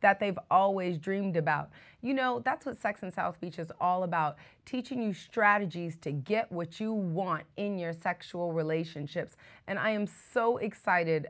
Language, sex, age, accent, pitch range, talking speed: English, female, 30-49, American, 170-220 Hz, 175 wpm